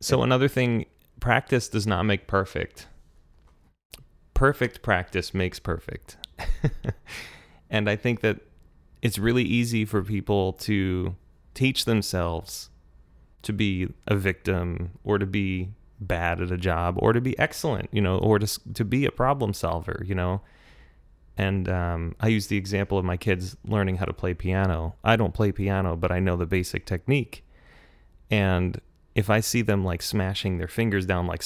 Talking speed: 160 wpm